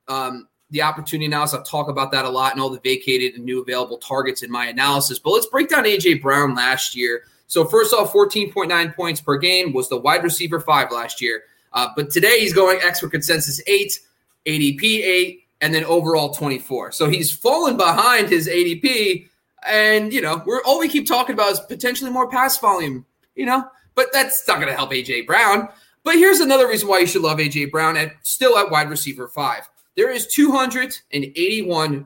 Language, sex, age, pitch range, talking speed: English, male, 20-39, 145-235 Hz, 200 wpm